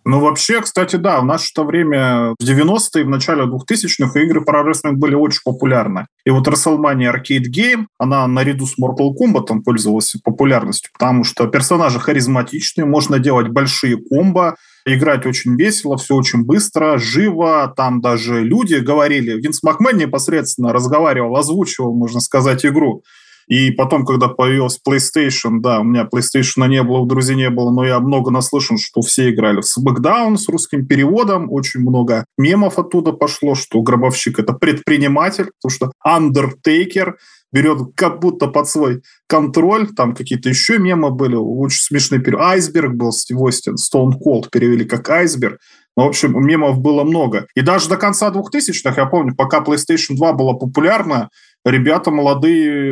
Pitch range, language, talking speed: 125-155 Hz, Russian, 155 wpm